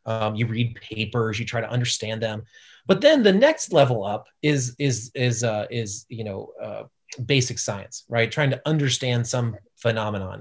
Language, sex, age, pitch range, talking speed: English, male, 30-49, 115-140 Hz, 180 wpm